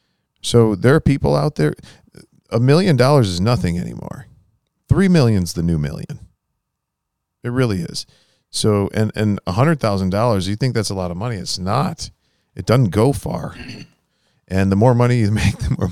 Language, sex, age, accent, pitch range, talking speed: English, male, 40-59, American, 100-135 Hz, 175 wpm